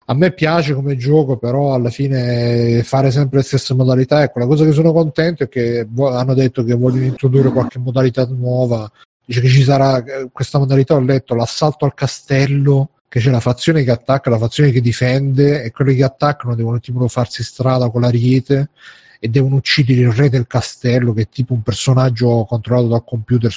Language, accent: Italian, native